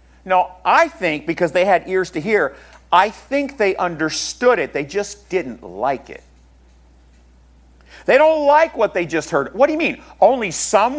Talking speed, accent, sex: 175 wpm, American, male